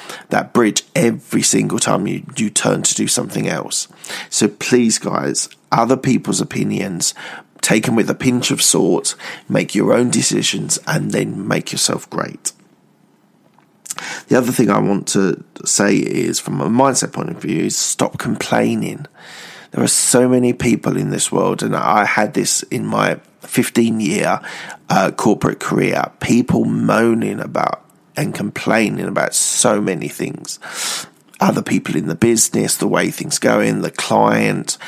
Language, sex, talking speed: English, male, 155 wpm